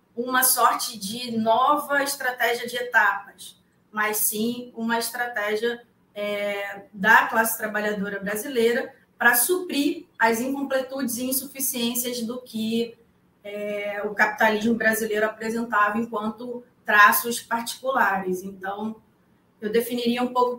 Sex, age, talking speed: female, 20-39, 100 wpm